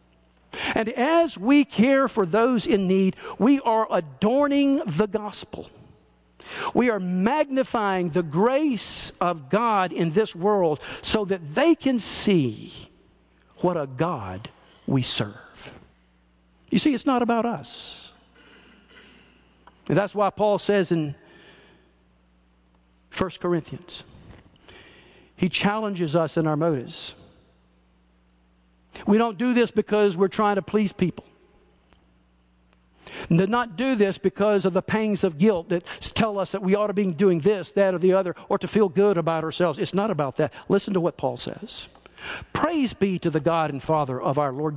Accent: American